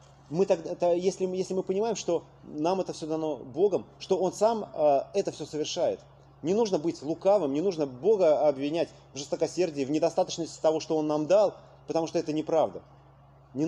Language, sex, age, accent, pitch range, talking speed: Russian, male, 30-49, native, 140-175 Hz, 180 wpm